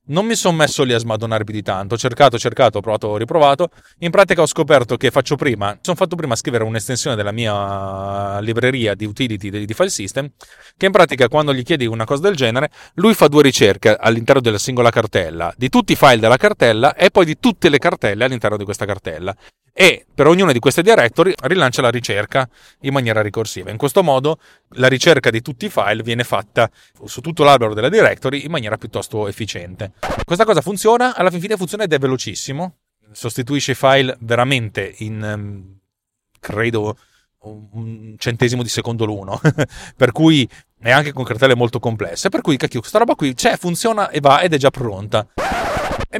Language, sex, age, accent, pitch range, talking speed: Italian, male, 30-49, native, 110-155 Hz, 190 wpm